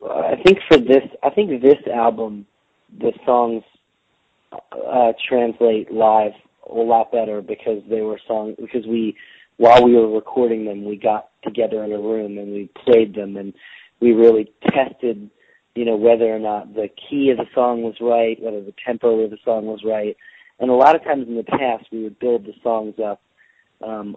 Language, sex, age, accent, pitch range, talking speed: English, male, 30-49, American, 105-120 Hz, 190 wpm